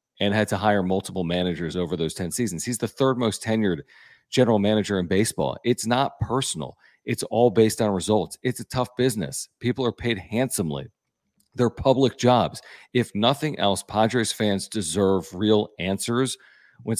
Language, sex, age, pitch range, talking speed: English, male, 40-59, 100-120 Hz, 165 wpm